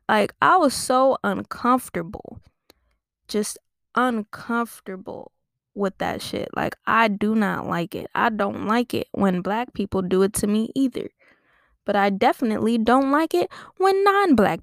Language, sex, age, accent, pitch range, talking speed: English, female, 10-29, American, 220-290 Hz, 150 wpm